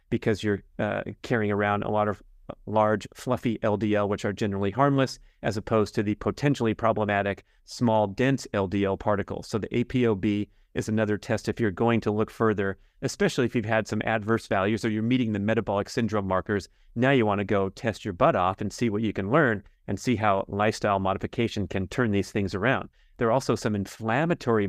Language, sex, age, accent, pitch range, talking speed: English, male, 30-49, American, 100-120 Hz, 195 wpm